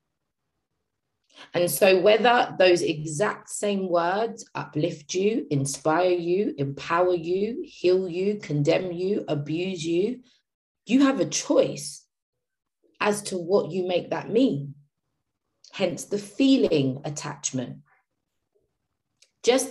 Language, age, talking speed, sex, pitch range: English, 30-49, 105 wpm, female, 150-225 Hz